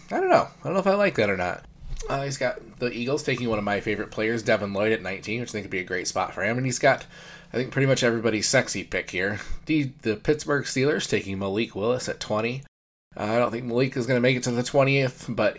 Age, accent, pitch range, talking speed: 20-39, American, 100-125 Hz, 275 wpm